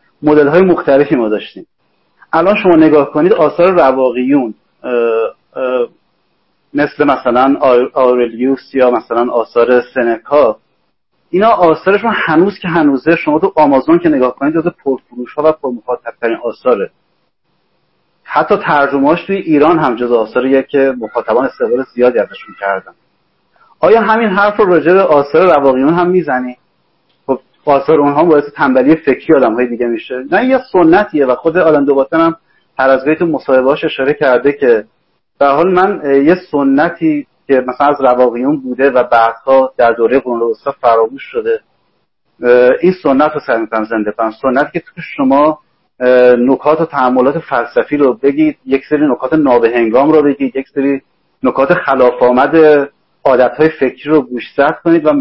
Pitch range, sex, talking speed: 125-160 Hz, male, 140 wpm